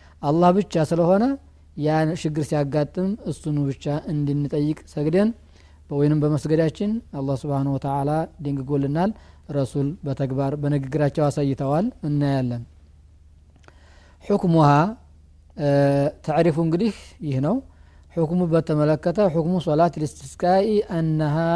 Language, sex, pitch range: Amharic, male, 135-160 Hz